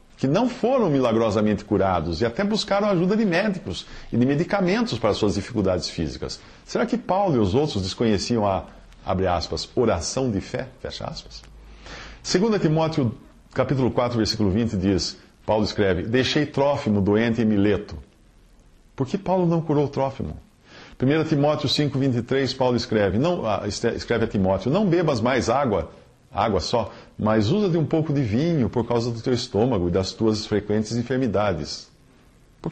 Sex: male